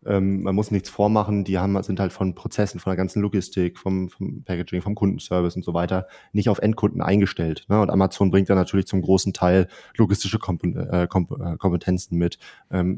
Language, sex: German, male